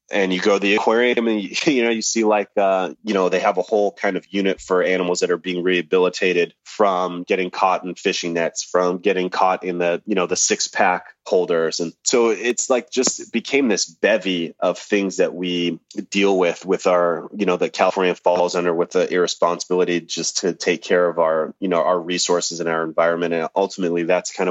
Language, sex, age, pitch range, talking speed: English, male, 30-49, 85-95 Hz, 215 wpm